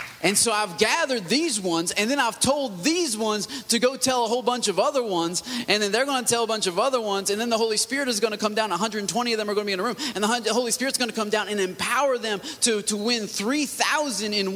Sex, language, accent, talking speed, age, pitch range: male, English, American, 280 wpm, 30-49, 195-265 Hz